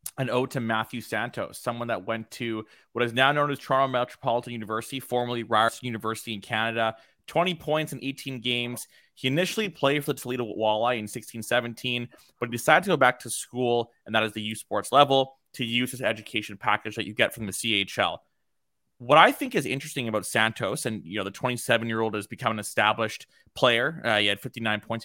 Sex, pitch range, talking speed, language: male, 110-130 Hz, 205 wpm, English